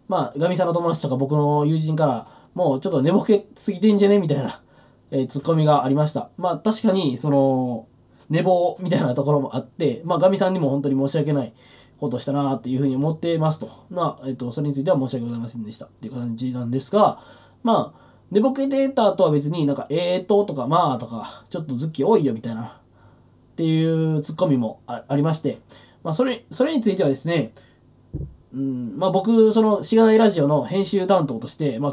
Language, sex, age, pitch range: Japanese, male, 20-39, 135-200 Hz